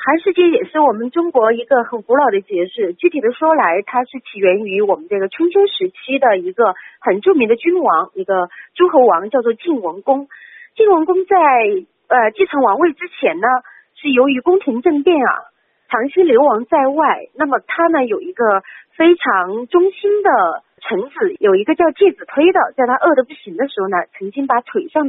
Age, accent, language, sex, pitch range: 30-49, native, Chinese, female, 250-365 Hz